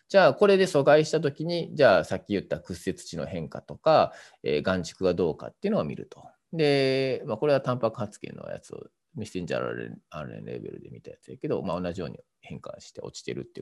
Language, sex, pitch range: Japanese, male, 100-155 Hz